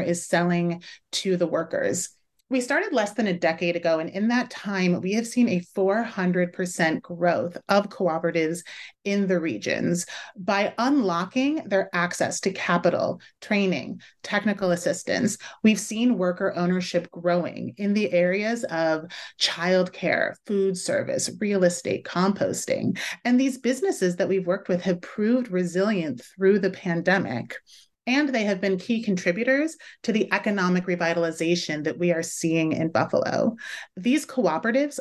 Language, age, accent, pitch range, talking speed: English, 30-49, American, 175-220 Hz, 140 wpm